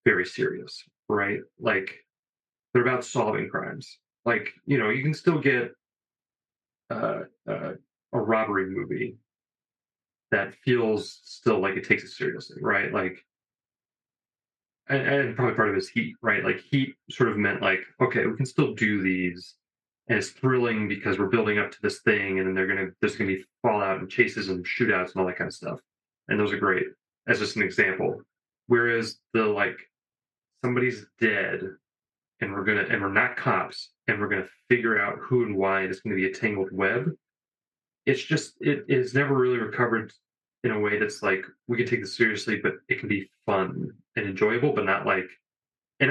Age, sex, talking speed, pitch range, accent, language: 30-49, male, 185 wpm, 95-125 Hz, American, English